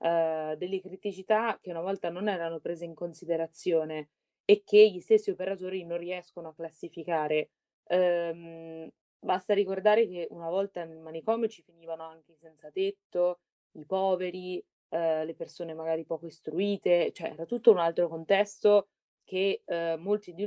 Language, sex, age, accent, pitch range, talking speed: Italian, female, 20-39, native, 165-205 Hz, 150 wpm